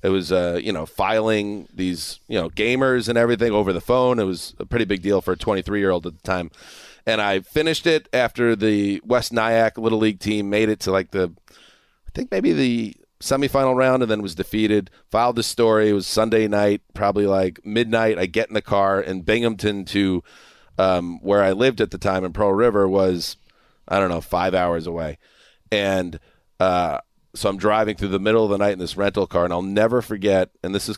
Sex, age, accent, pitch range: male, 30-49, American, 95-115 Hz